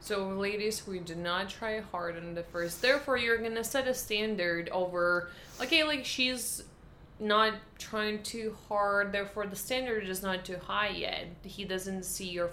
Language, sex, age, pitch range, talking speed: English, female, 20-39, 175-230 Hz, 175 wpm